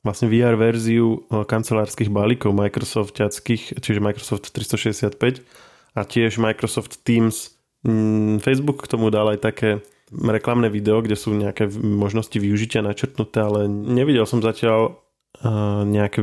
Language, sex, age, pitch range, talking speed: Slovak, male, 20-39, 105-120 Hz, 120 wpm